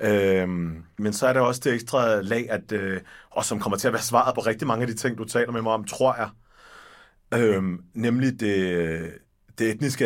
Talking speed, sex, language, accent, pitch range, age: 215 wpm, male, Danish, native, 100-120 Hz, 30-49